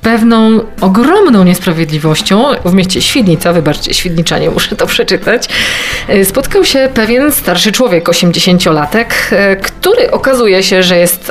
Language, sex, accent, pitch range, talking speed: Polish, female, native, 175-235 Hz, 115 wpm